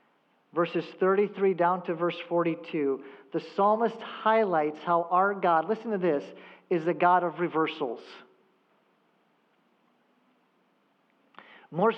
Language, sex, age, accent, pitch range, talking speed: English, male, 40-59, American, 170-220 Hz, 105 wpm